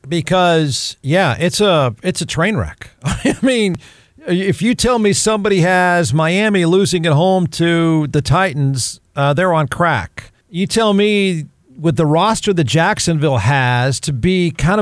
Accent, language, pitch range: American, English, 145-200 Hz